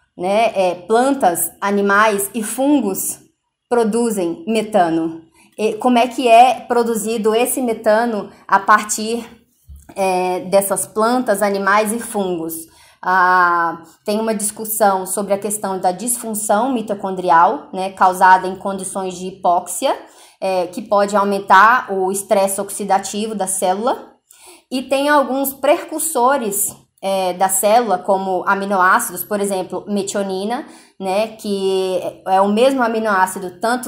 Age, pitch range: 20-39, 190-240 Hz